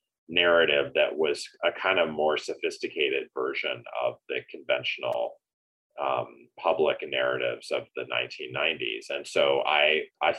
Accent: American